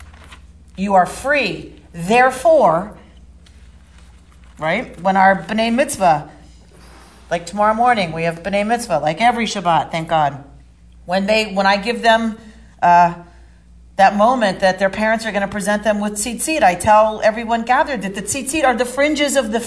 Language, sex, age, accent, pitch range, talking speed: English, female, 40-59, American, 175-255 Hz, 155 wpm